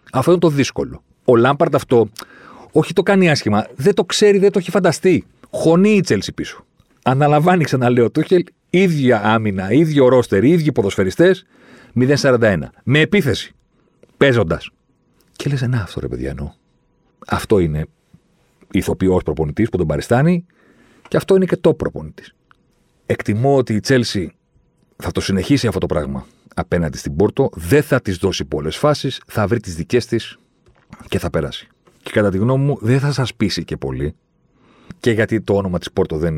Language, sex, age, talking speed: Greek, male, 40-59, 165 wpm